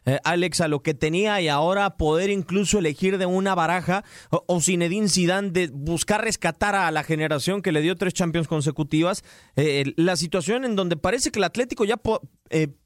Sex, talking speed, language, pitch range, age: male, 190 wpm, Spanish, 170-215 Hz, 30-49